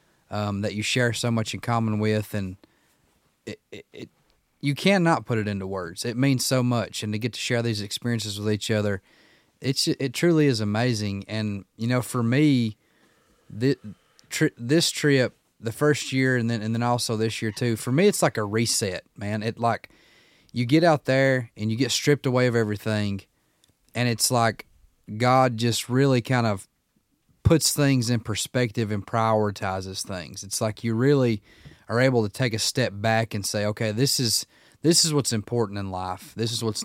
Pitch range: 105-130 Hz